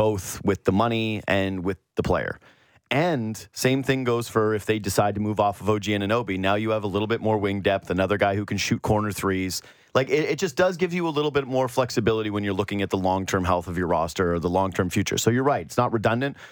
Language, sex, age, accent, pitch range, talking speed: English, male, 30-49, American, 100-130 Hz, 260 wpm